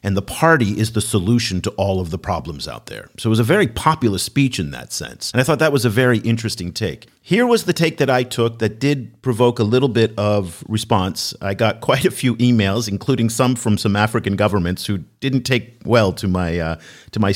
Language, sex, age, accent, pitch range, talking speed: English, male, 50-69, American, 100-125 Hz, 230 wpm